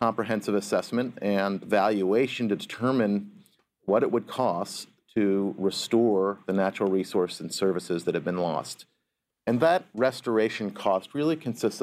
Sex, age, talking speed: male, 40-59, 135 wpm